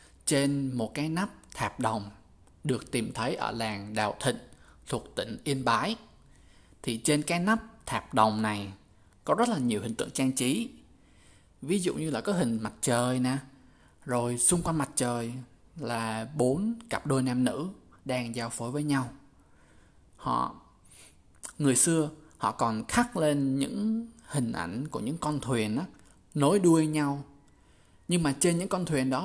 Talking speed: 170 wpm